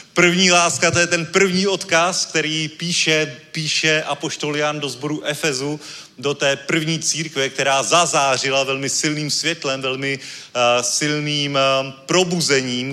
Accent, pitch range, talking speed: native, 135-160 Hz, 135 wpm